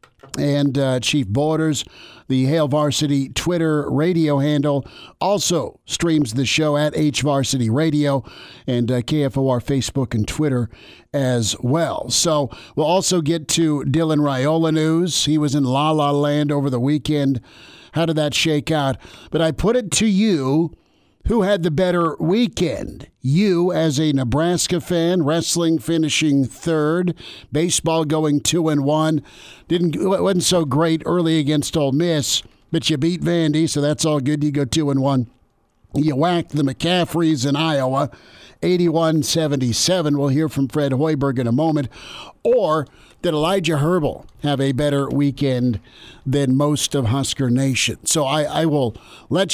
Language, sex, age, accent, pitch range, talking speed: English, male, 50-69, American, 135-160 Hz, 155 wpm